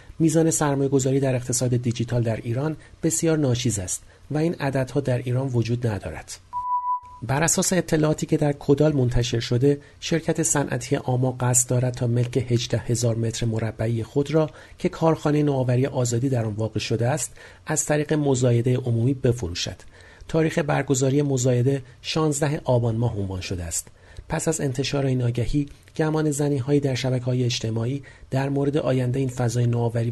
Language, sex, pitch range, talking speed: Persian, male, 115-145 Hz, 155 wpm